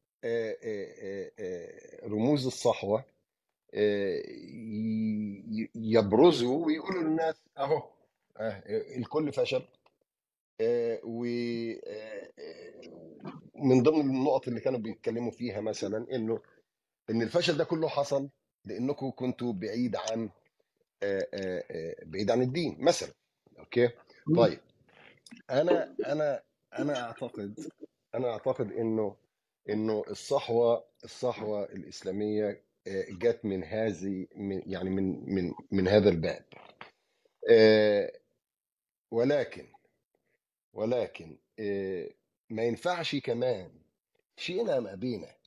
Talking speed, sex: 80 wpm, male